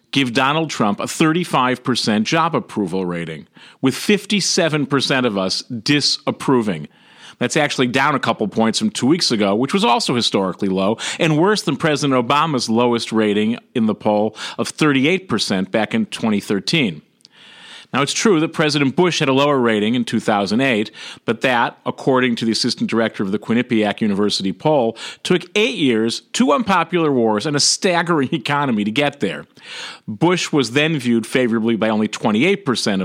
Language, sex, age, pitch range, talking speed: English, male, 40-59, 115-165 Hz, 160 wpm